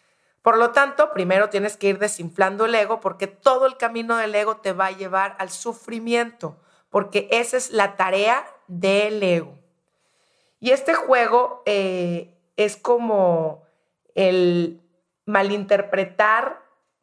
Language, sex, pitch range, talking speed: Spanish, female, 190-235 Hz, 130 wpm